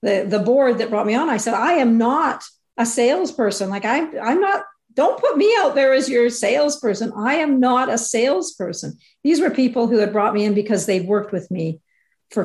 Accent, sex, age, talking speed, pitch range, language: American, female, 50-69, 215 wpm, 200-255 Hz, English